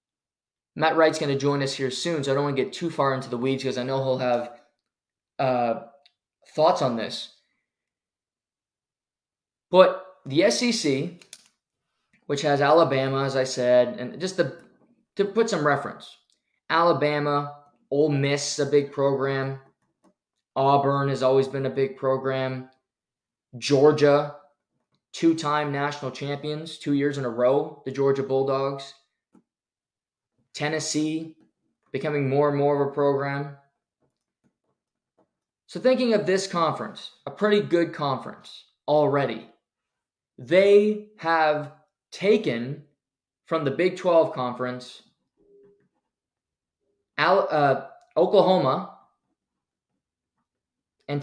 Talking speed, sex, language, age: 115 wpm, male, English, 20-39